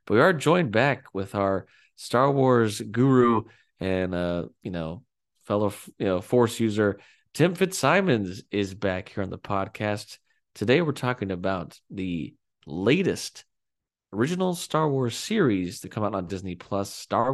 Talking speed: 150 wpm